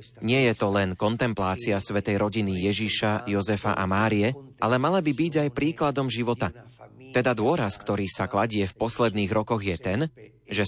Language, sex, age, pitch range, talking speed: Slovak, male, 30-49, 105-130 Hz, 165 wpm